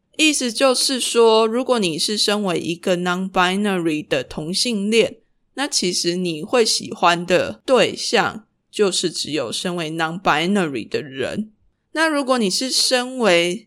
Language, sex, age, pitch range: Chinese, female, 20-39, 175-235 Hz